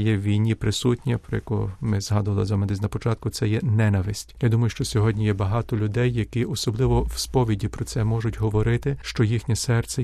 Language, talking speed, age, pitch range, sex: Ukrainian, 190 wpm, 40-59, 110-125 Hz, male